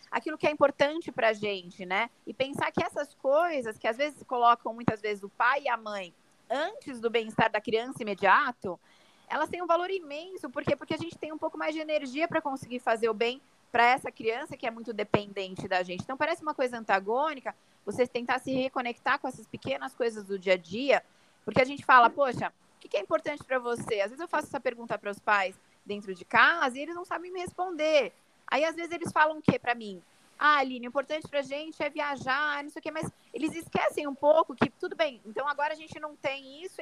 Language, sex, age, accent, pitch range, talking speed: Portuguese, female, 20-39, Brazilian, 225-300 Hz, 230 wpm